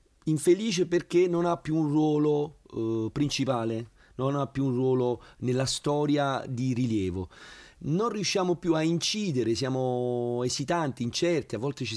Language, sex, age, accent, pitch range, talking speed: Italian, male, 40-59, native, 115-150 Hz, 145 wpm